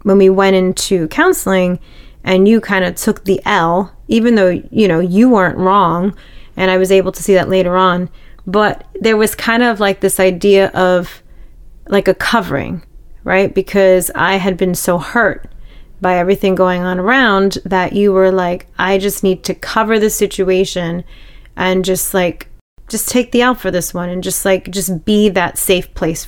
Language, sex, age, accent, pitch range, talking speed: English, female, 30-49, American, 185-210 Hz, 185 wpm